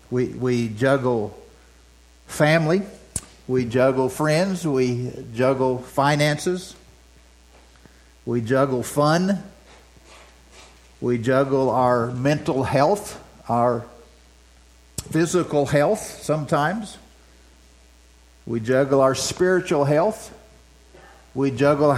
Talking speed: 80 wpm